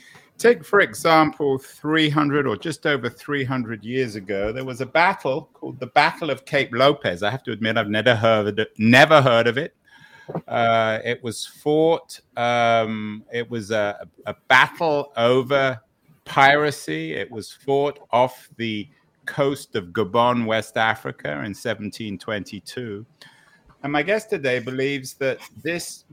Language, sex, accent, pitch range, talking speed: English, male, British, 110-140 Hz, 140 wpm